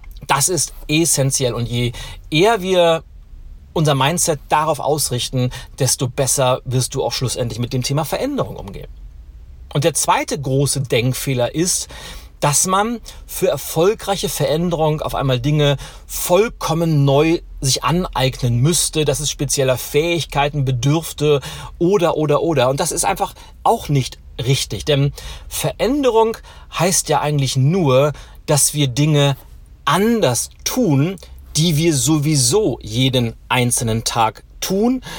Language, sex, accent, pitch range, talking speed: German, male, German, 125-165 Hz, 125 wpm